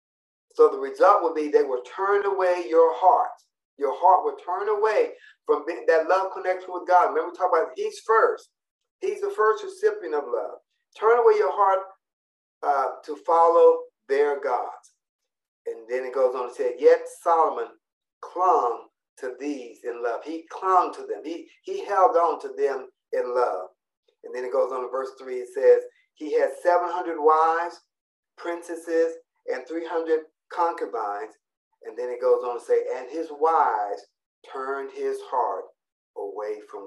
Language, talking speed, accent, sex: English, 170 wpm, American, male